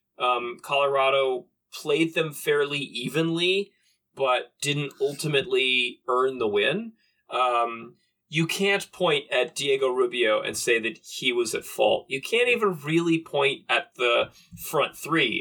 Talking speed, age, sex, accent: 135 wpm, 30-49, male, American